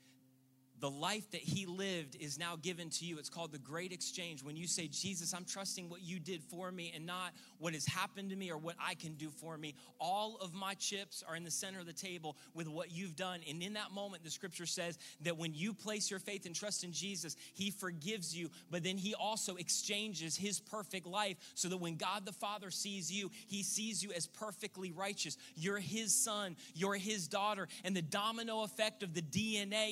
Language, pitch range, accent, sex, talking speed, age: English, 185-270 Hz, American, male, 220 wpm, 30-49